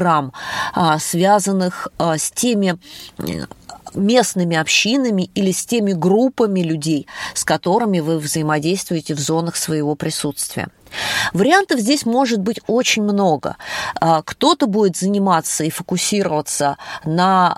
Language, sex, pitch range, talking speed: Russian, female, 160-210 Hz, 100 wpm